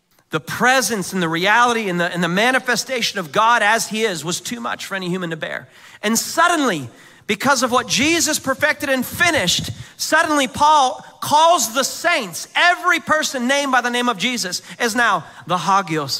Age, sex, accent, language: 40-59, male, American, English